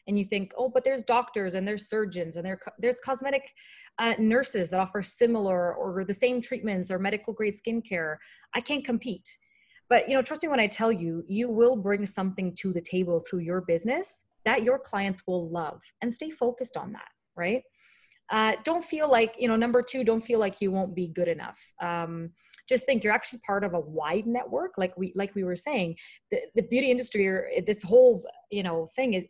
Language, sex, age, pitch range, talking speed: English, female, 30-49, 185-250 Hz, 205 wpm